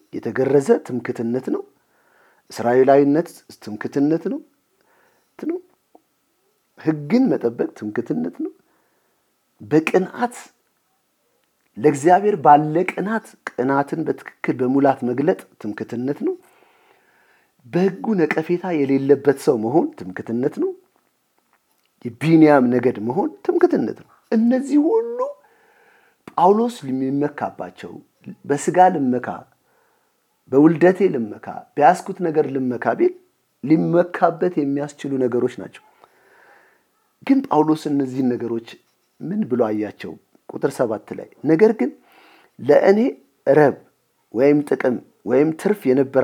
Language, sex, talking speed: English, male, 60 wpm